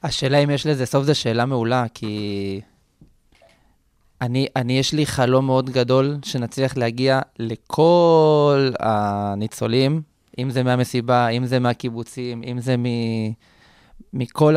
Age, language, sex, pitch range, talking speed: 20-39, Hebrew, male, 120-155 Hz, 125 wpm